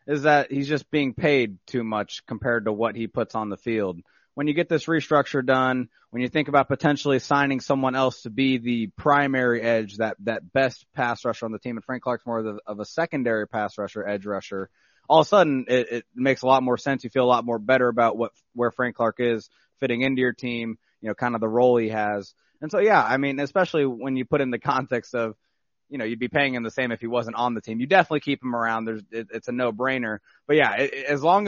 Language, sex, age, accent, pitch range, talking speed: English, male, 30-49, American, 115-140 Hz, 250 wpm